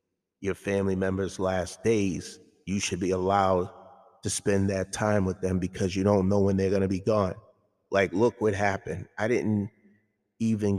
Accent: American